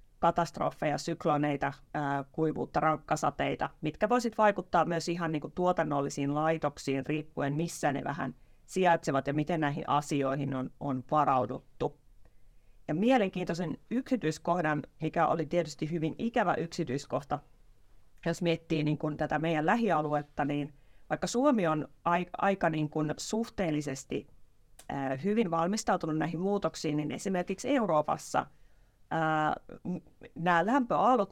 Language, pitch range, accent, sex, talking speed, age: Finnish, 145-175 Hz, native, female, 100 wpm, 30-49